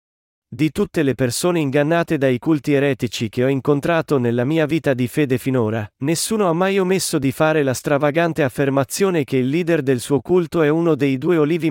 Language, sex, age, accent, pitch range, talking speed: Italian, male, 40-59, native, 125-160 Hz, 190 wpm